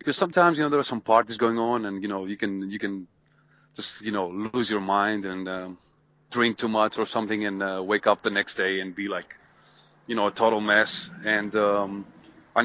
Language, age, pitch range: English, 30-49, 100-135 Hz